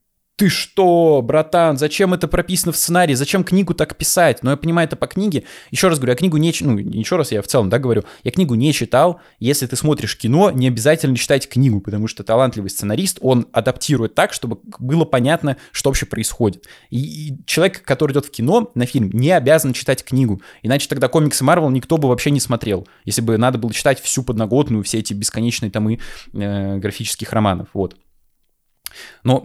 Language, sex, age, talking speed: Russian, male, 20-39, 195 wpm